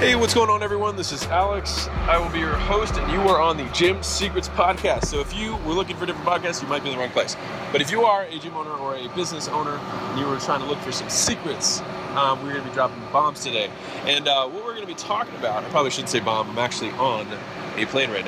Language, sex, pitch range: English, male, 135-180 Hz